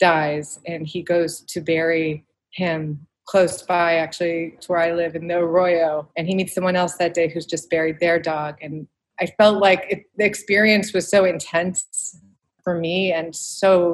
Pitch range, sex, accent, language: 170-205 Hz, female, American, English